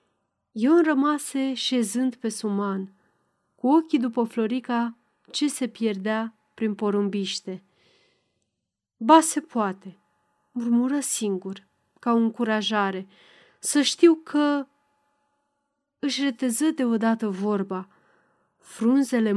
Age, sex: 30-49, female